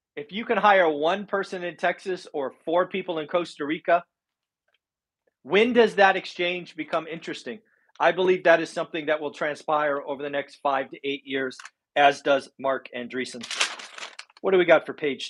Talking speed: 175 wpm